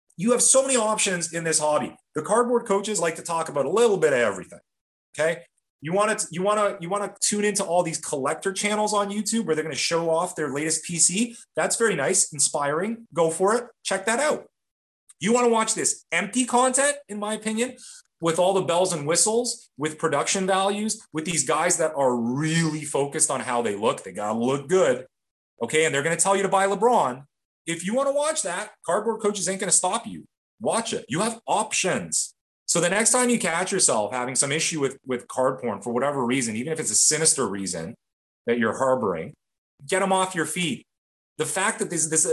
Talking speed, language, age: 225 wpm, English, 30-49